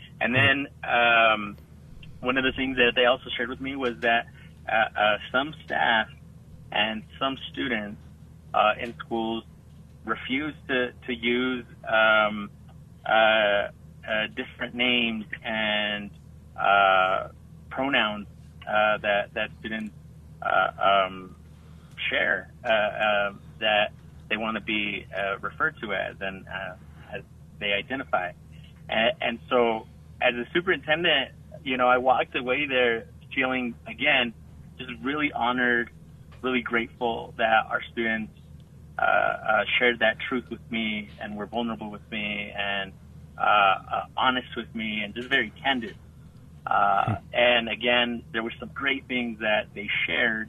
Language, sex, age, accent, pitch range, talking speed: English, male, 30-49, American, 105-125 Hz, 135 wpm